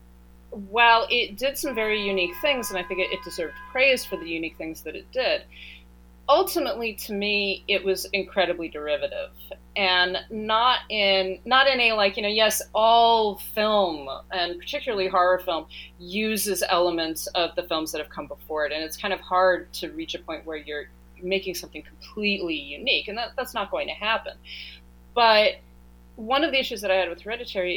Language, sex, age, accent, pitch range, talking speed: English, female, 30-49, American, 150-215 Hz, 185 wpm